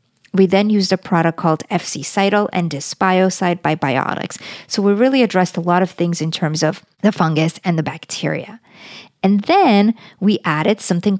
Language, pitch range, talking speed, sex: English, 175-220 Hz, 175 wpm, female